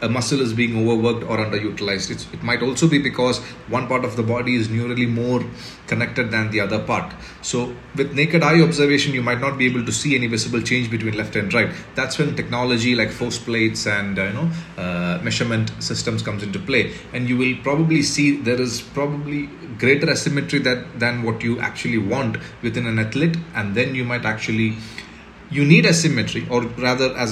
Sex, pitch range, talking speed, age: male, 110-130 Hz, 200 wpm, 30-49